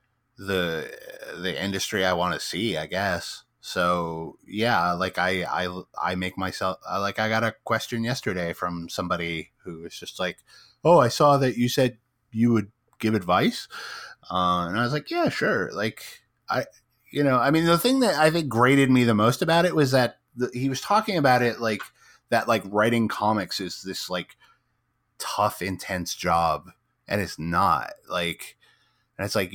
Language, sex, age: English, male, 30-49